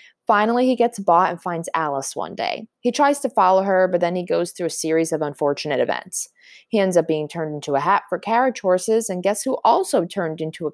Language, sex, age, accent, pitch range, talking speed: English, female, 20-39, American, 160-220 Hz, 235 wpm